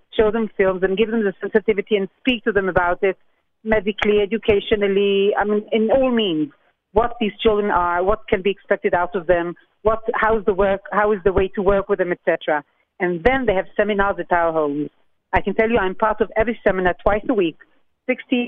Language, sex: English, female